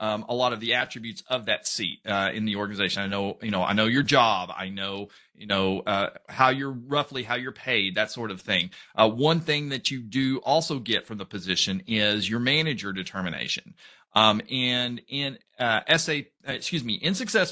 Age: 40-59